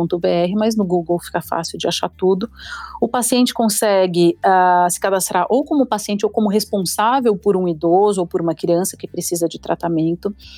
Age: 40-59